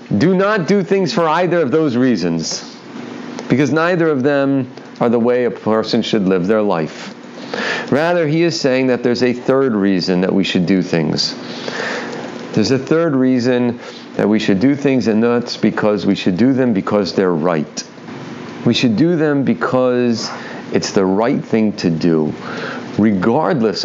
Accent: American